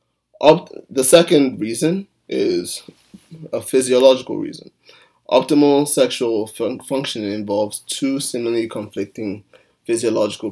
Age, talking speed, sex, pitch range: 20-39, 85 wpm, male, 110-140 Hz